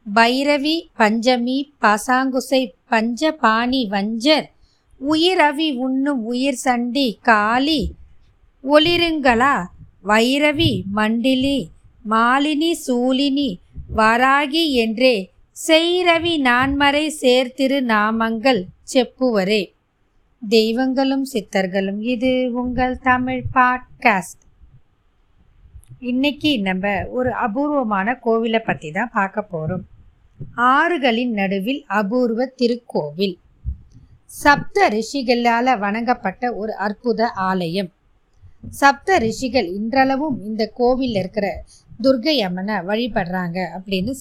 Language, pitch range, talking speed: Tamil, 200-270 Hz, 75 wpm